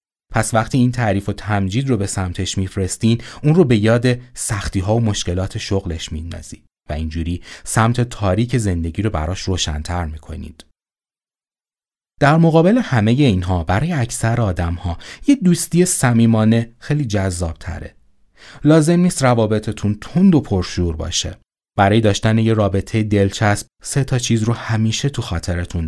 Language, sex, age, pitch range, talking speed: Persian, male, 30-49, 90-130 Hz, 140 wpm